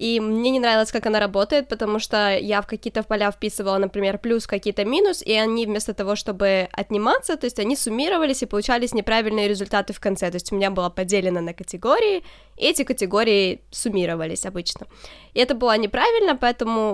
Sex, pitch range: female, 200-245 Hz